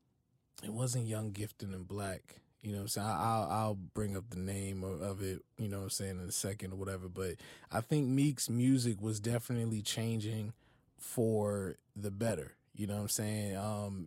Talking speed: 195 wpm